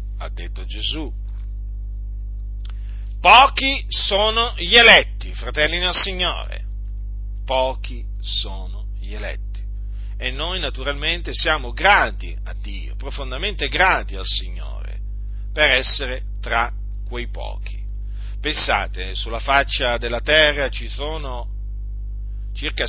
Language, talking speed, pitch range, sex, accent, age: Italian, 100 wpm, 100-135 Hz, male, native, 40-59